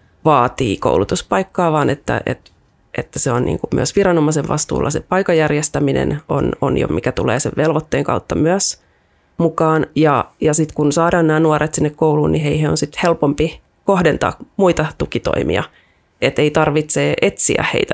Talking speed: 155 wpm